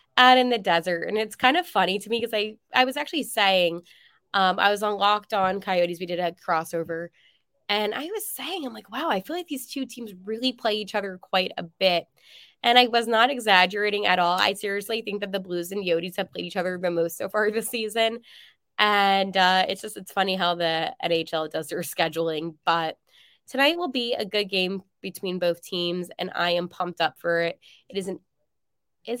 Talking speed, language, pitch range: 220 wpm, English, 180-240 Hz